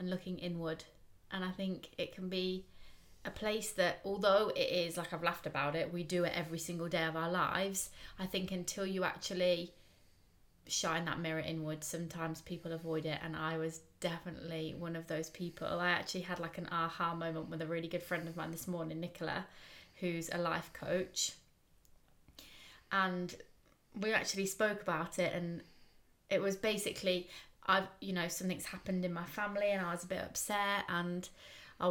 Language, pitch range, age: English, 170-195 Hz, 20-39